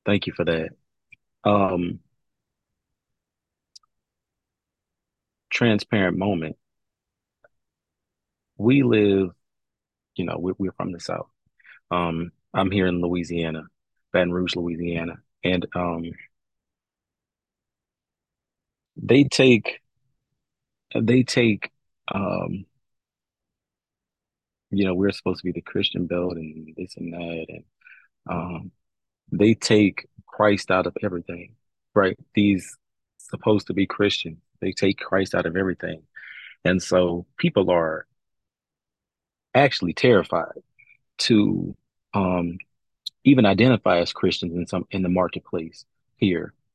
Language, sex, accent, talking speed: English, male, American, 105 wpm